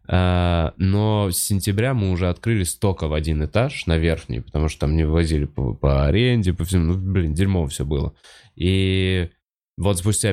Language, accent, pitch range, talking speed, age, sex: Russian, native, 80-100 Hz, 180 wpm, 20-39, male